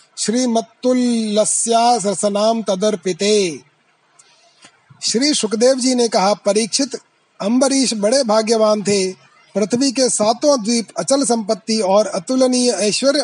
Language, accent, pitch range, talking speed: Hindi, native, 205-250 Hz, 95 wpm